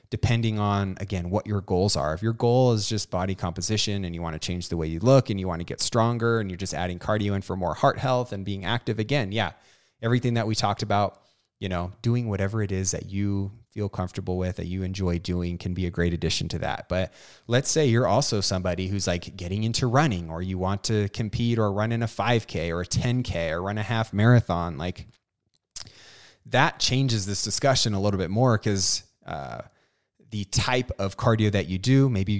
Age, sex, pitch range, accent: 20-39, male, 90-115 Hz, American